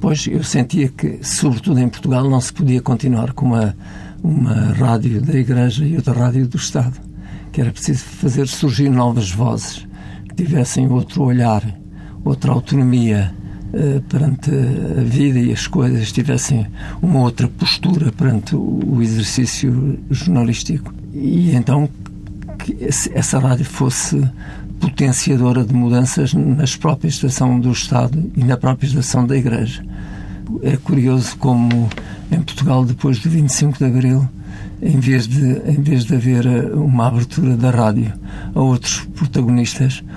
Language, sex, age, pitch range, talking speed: Portuguese, male, 60-79, 120-140 Hz, 140 wpm